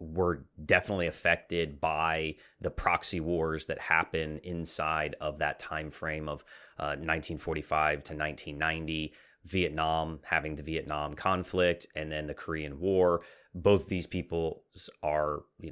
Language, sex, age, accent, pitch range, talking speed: English, male, 30-49, American, 75-90 Hz, 130 wpm